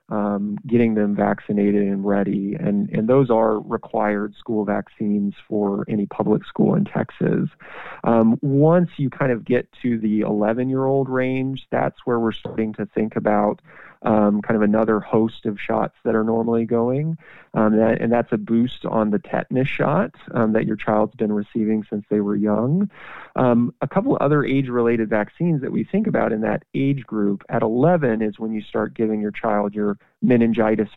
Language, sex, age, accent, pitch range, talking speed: English, male, 30-49, American, 105-130 Hz, 180 wpm